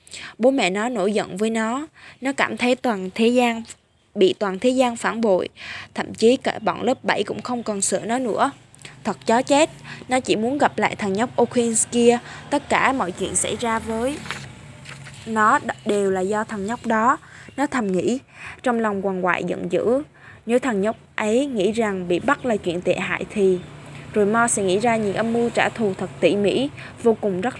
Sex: female